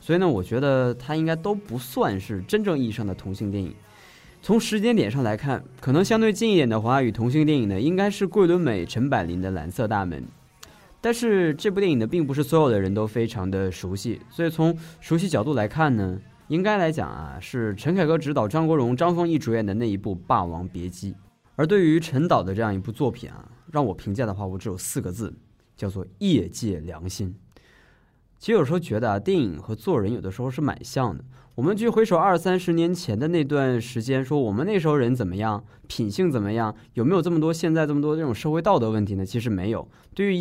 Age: 20-39